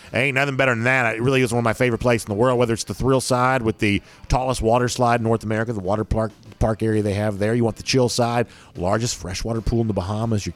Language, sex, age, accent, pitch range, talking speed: English, male, 40-59, American, 105-125 Hz, 280 wpm